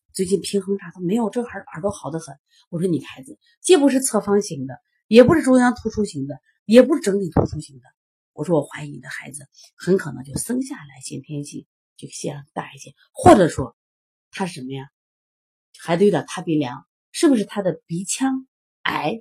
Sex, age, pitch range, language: female, 30-49, 140-220 Hz, Chinese